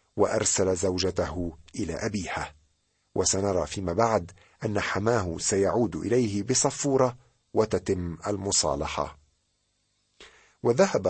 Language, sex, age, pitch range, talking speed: Arabic, male, 50-69, 90-115 Hz, 80 wpm